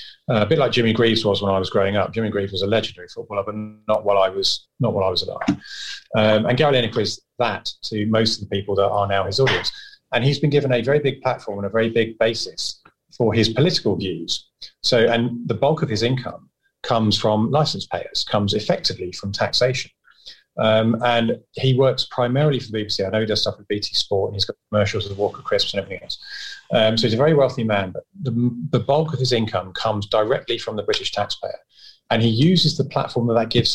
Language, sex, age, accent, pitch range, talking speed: English, male, 30-49, British, 110-140 Hz, 230 wpm